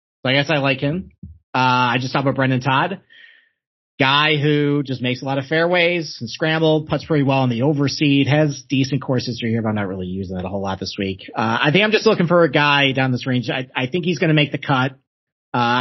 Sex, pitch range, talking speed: male, 130-185 Hz, 255 wpm